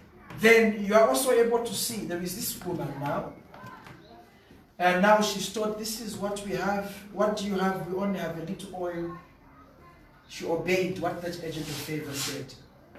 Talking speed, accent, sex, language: 180 wpm, South African, male, English